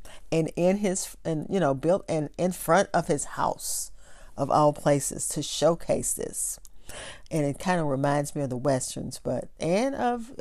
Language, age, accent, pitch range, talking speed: English, 40-59, American, 150-205 Hz, 180 wpm